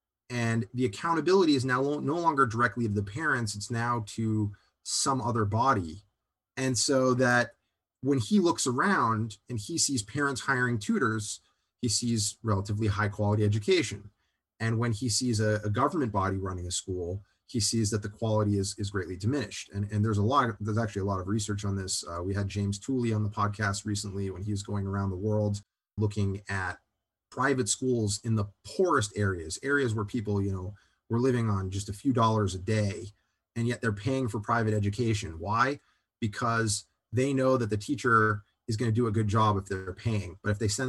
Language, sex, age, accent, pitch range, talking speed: English, male, 30-49, American, 100-120 Hz, 200 wpm